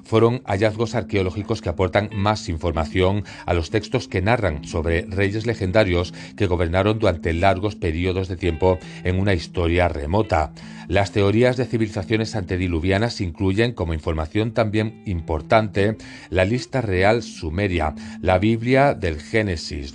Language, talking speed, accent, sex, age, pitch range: Spanish, 130 wpm, Spanish, male, 40-59, 90-110 Hz